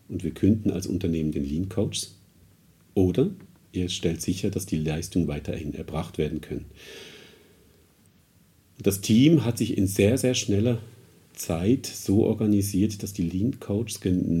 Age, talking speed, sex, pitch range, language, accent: 50-69, 140 wpm, male, 80-105 Hz, German, German